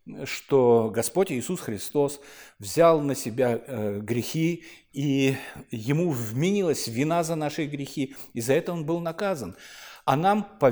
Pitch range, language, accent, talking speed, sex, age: 125-185 Hz, Russian, native, 135 wpm, male, 50-69